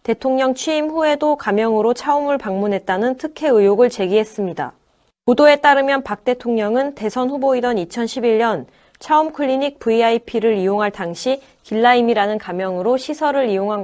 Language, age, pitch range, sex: Korean, 20-39, 200-260 Hz, female